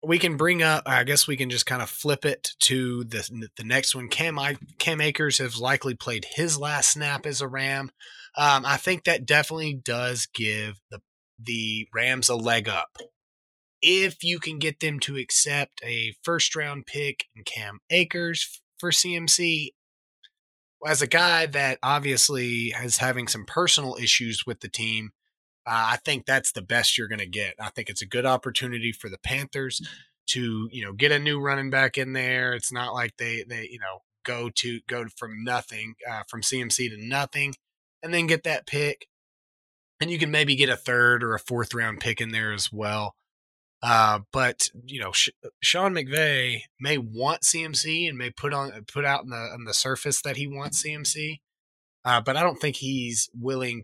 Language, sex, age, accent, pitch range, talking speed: English, male, 20-39, American, 115-150 Hz, 190 wpm